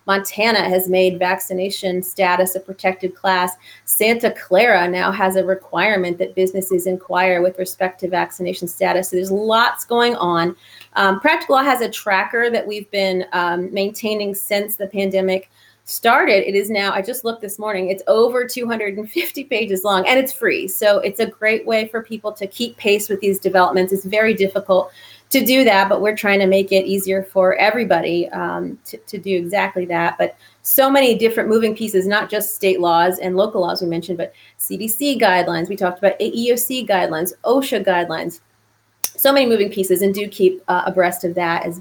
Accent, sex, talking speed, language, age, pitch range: American, female, 185 wpm, English, 30-49, 185-220 Hz